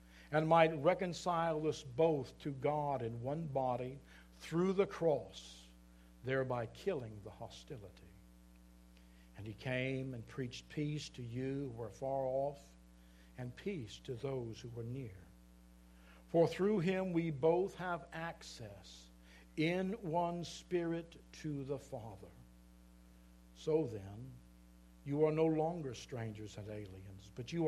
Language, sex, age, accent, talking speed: English, male, 60-79, American, 130 wpm